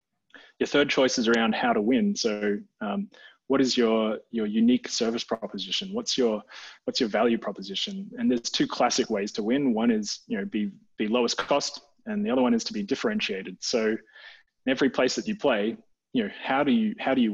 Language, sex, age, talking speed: English, male, 20-39, 210 wpm